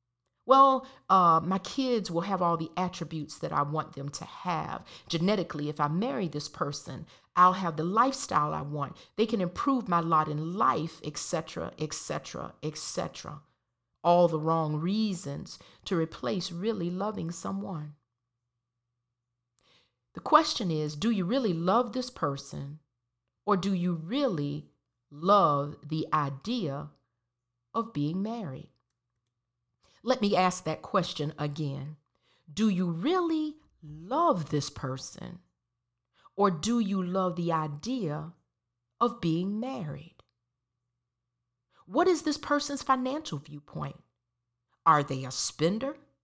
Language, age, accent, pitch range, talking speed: English, 40-59, American, 140-200 Hz, 125 wpm